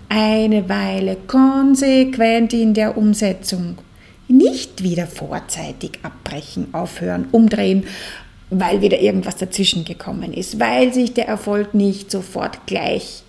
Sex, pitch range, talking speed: female, 180-230 Hz, 115 wpm